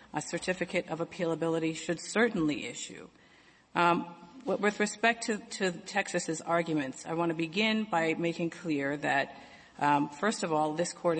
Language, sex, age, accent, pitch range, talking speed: English, female, 40-59, American, 155-175 Hz, 150 wpm